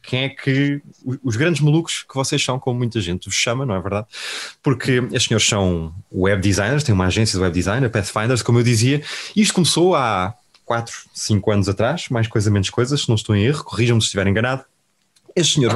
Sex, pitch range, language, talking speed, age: male, 105-130 Hz, Portuguese, 215 wpm, 20-39